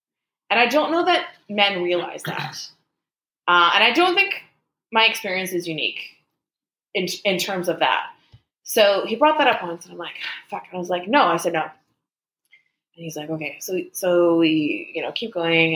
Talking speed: 195 wpm